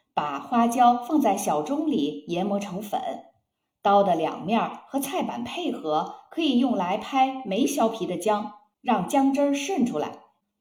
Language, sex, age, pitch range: Chinese, female, 50-69, 200-280 Hz